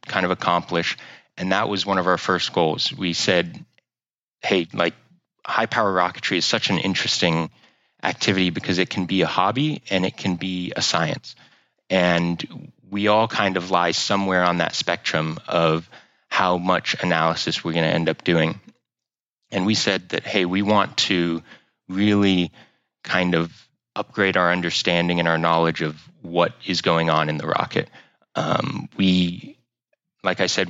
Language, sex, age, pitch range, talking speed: English, male, 30-49, 85-100 Hz, 165 wpm